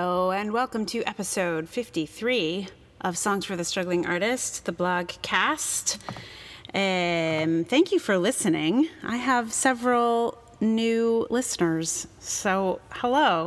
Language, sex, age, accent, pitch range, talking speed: English, female, 30-49, American, 165-220 Hz, 120 wpm